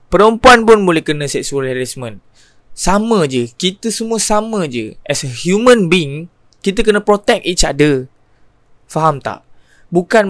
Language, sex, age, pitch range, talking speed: Malay, male, 20-39, 140-205 Hz, 140 wpm